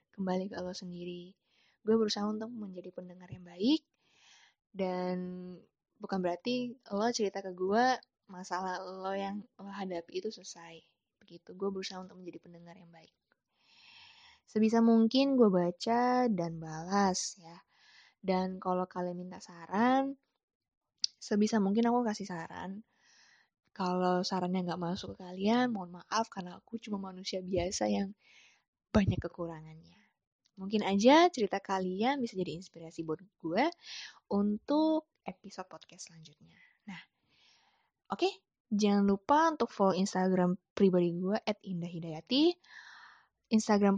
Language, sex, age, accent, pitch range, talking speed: Indonesian, female, 20-39, native, 180-225 Hz, 125 wpm